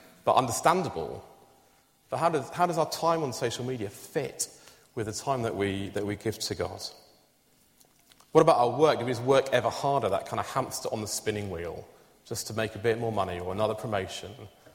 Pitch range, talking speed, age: 100-140 Hz, 210 wpm, 30-49